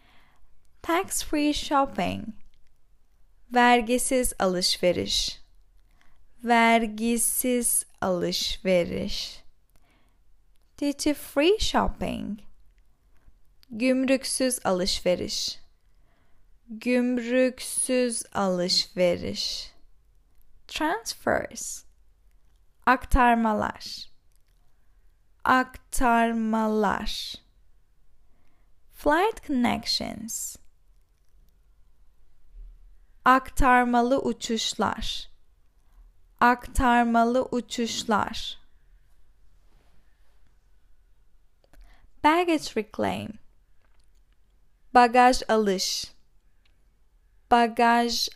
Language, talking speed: Turkish, 35 wpm